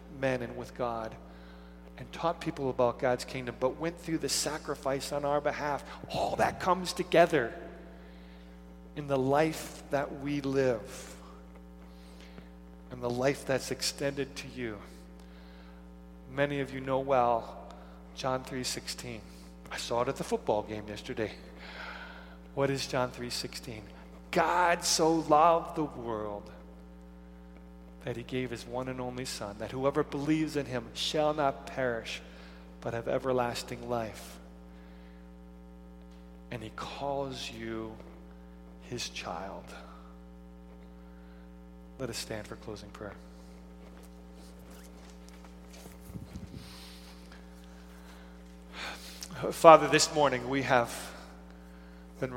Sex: male